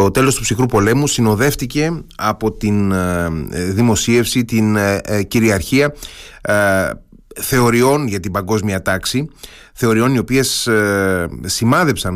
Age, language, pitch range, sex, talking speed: 30-49, Greek, 105-135 Hz, male, 100 wpm